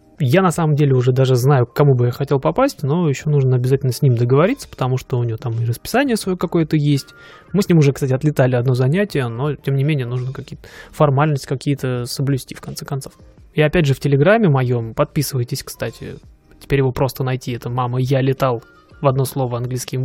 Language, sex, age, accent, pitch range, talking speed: Russian, male, 20-39, native, 130-150 Hz, 210 wpm